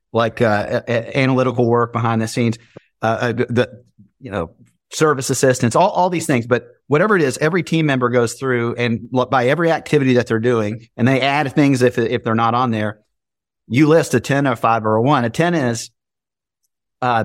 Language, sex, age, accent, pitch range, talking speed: English, male, 40-59, American, 115-140 Hz, 200 wpm